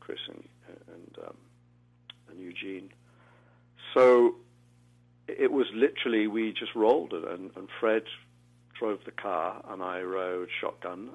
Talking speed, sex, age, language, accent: 110 wpm, male, 50-69, English, British